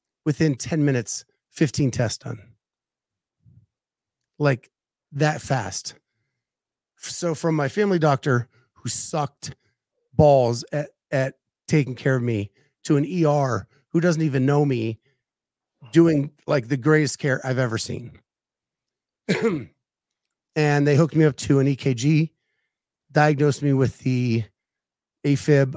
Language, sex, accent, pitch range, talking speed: English, male, American, 120-150 Hz, 120 wpm